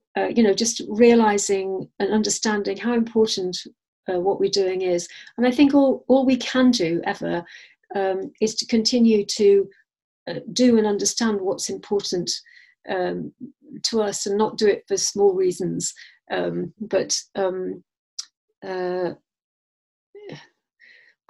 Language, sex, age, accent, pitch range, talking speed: English, female, 50-69, British, 195-250 Hz, 135 wpm